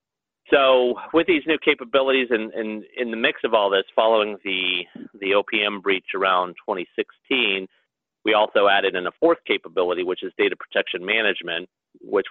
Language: English